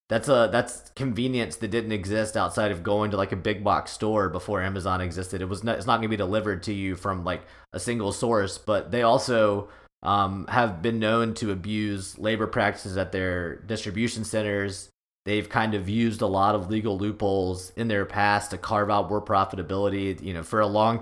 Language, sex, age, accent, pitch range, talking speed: English, male, 30-49, American, 95-110 Hz, 205 wpm